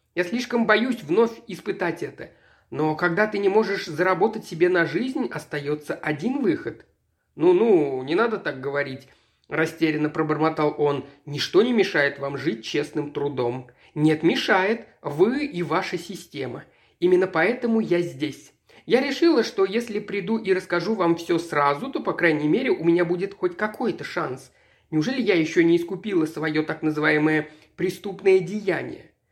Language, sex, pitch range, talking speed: Russian, male, 150-195 Hz, 150 wpm